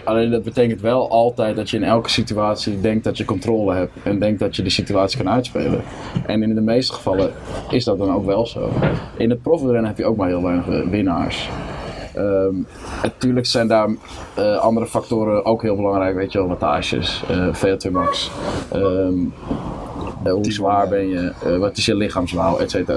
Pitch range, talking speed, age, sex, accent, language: 95-115 Hz, 195 wpm, 20-39, male, Dutch, Dutch